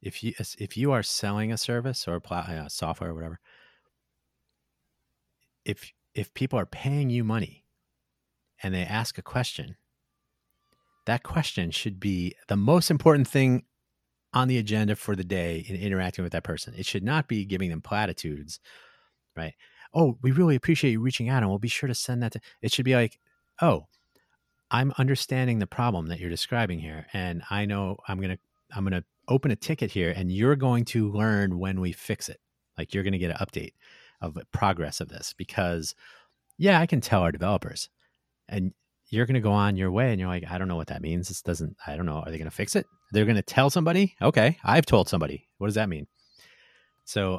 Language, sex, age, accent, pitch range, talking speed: English, male, 30-49, American, 85-125 Hz, 205 wpm